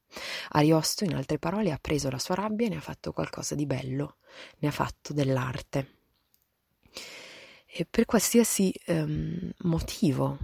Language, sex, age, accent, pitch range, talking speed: Italian, female, 20-39, native, 140-180 Hz, 145 wpm